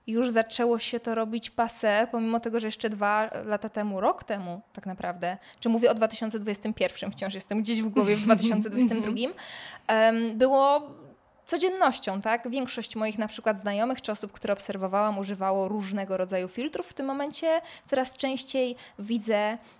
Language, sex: Polish, female